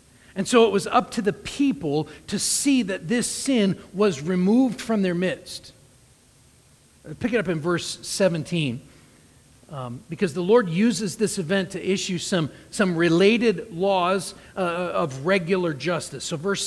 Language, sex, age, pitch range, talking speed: English, male, 40-59, 165-210 Hz, 155 wpm